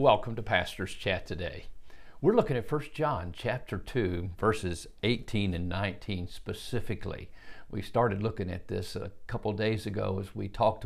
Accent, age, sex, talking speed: American, 50-69, male, 160 wpm